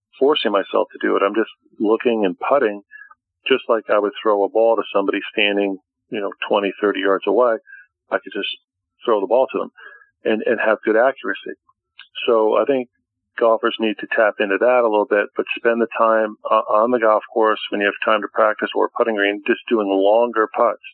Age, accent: 50-69, American